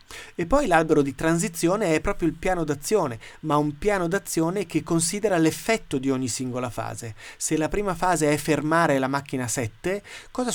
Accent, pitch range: native, 130-165 Hz